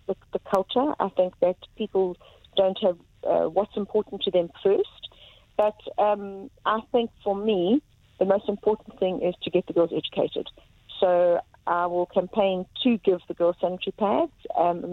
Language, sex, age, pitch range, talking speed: English, female, 40-59, 180-225 Hz, 170 wpm